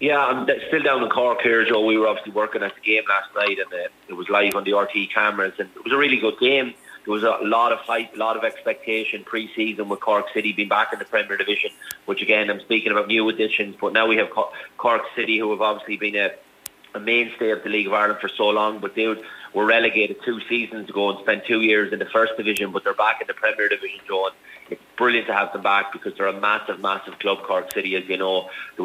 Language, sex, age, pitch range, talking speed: English, male, 30-49, 100-110 Hz, 255 wpm